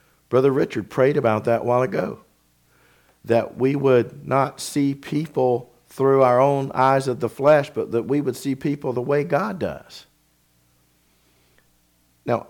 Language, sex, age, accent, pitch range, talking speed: English, male, 50-69, American, 90-135 Hz, 155 wpm